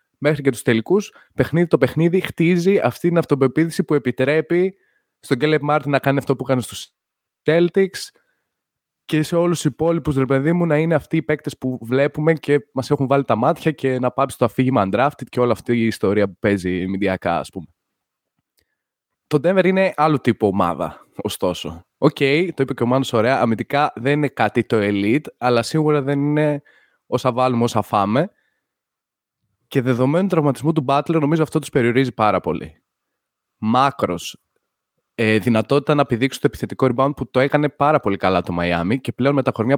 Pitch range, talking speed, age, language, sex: 125-155 Hz, 175 wpm, 20-39, Greek, male